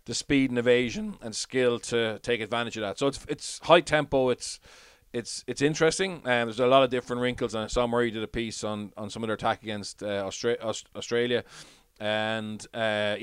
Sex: male